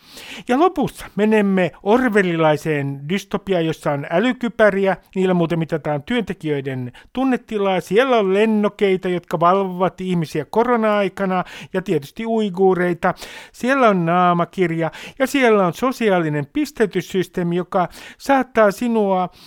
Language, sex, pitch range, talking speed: Finnish, male, 160-215 Hz, 105 wpm